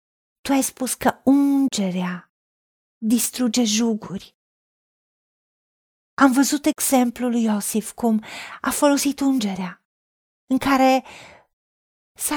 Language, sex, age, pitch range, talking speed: Romanian, female, 40-59, 210-280 Hz, 90 wpm